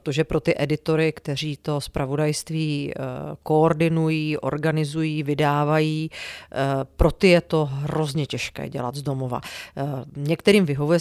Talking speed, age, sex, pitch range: 130 wpm, 40-59, female, 150-165 Hz